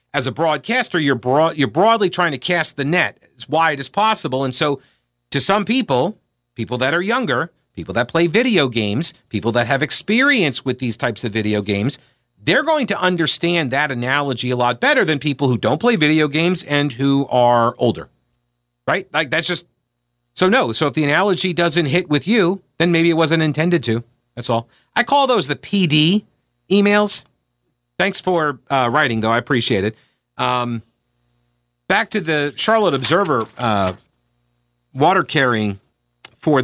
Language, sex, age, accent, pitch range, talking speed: English, male, 40-59, American, 120-180 Hz, 175 wpm